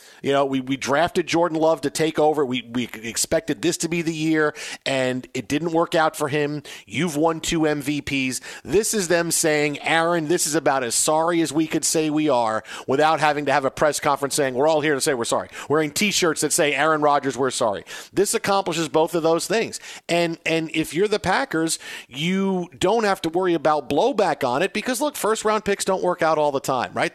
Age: 40-59